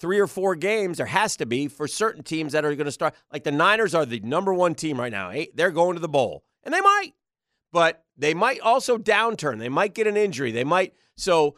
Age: 40-59